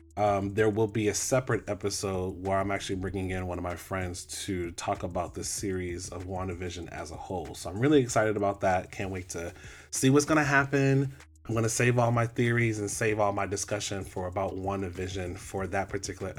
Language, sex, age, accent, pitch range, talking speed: English, male, 30-49, American, 90-110 Hz, 210 wpm